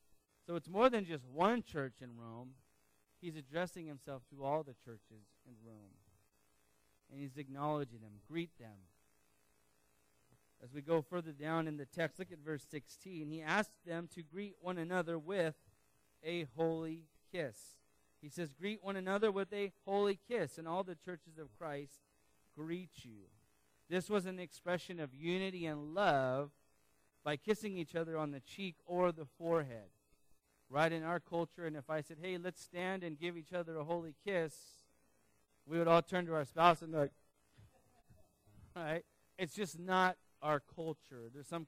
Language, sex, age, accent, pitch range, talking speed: English, male, 30-49, American, 135-170 Hz, 170 wpm